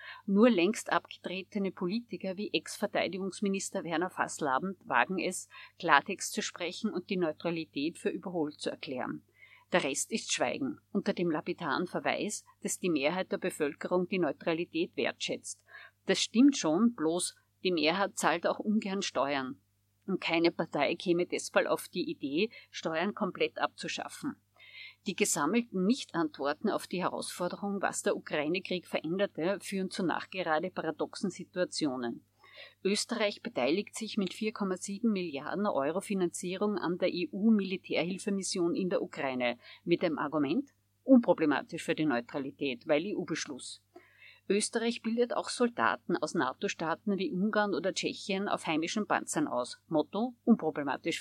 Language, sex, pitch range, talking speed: German, female, 165-210 Hz, 130 wpm